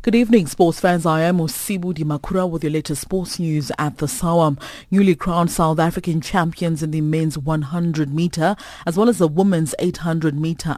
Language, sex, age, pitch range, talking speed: English, female, 30-49, 155-190 Hz, 190 wpm